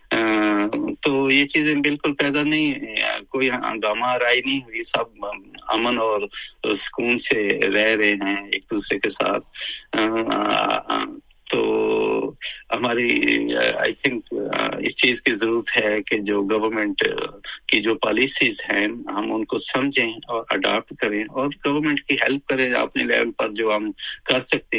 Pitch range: 115-155 Hz